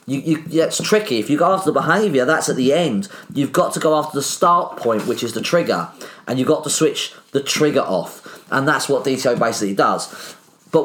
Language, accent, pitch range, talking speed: English, British, 120-160 Hz, 215 wpm